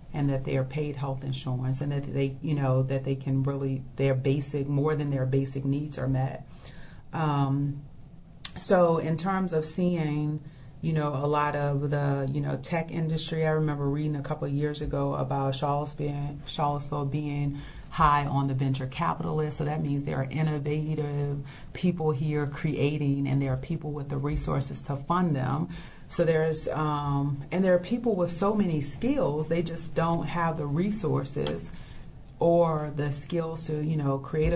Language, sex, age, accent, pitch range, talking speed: English, female, 30-49, American, 140-165 Hz, 175 wpm